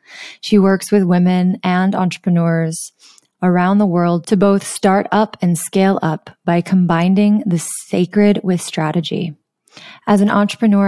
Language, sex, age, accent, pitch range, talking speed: English, female, 20-39, American, 170-195 Hz, 140 wpm